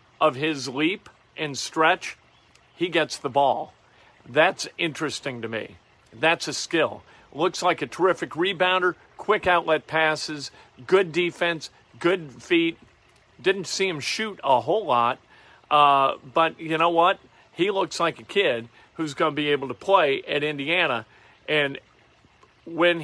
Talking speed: 145 wpm